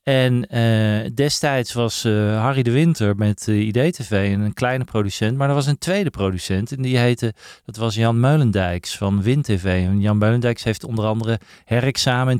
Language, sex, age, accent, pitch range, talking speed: Dutch, male, 40-59, Dutch, 105-130 Hz, 185 wpm